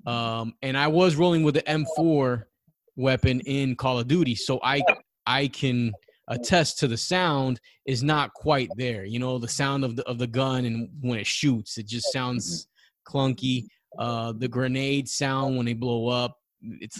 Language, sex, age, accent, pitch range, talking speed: English, male, 20-39, American, 120-150 Hz, 180 wpm